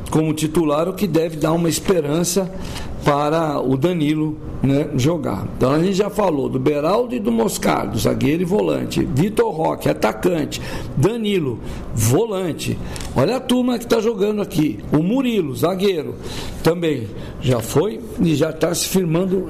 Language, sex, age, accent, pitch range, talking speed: Portuguese, male, 60-79, Brazilian, 150-195 Hz, 150 wpm